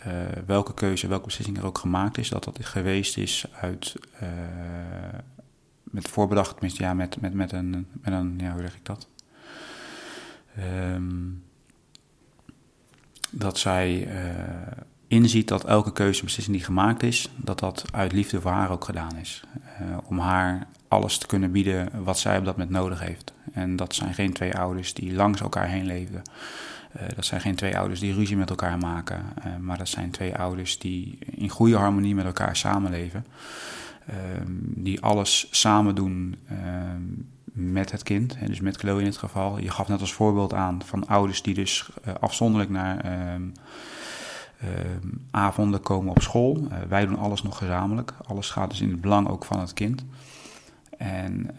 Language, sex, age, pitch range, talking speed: Dutch, male, 30-49, 90-105 Hz, 165 wpm